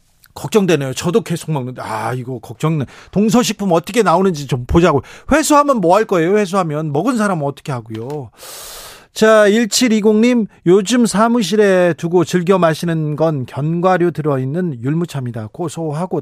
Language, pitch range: Korean, 140-190 Hz